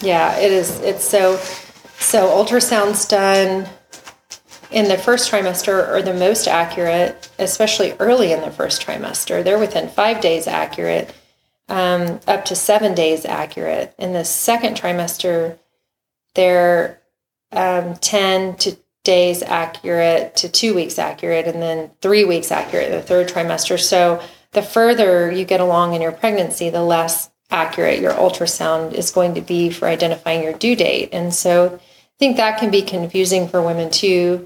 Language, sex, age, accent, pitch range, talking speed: English, female, 30-49, American, 170-200 Hz, 155 wpm